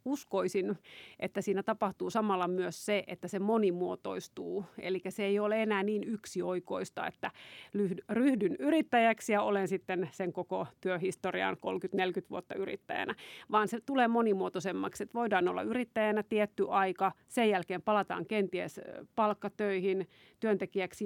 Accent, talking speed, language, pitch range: native, 130 wpm, Finnish, 185-215 Hz